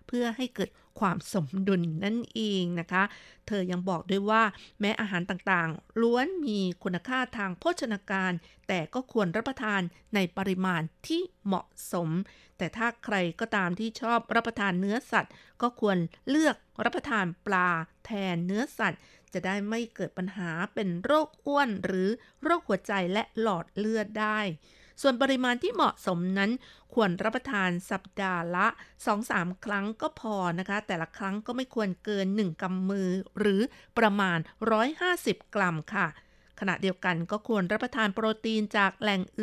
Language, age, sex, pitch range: Thai, 50-69, female, 185-230 Hz